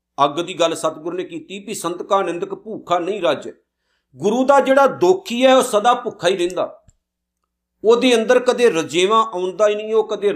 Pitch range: 145-205 Hz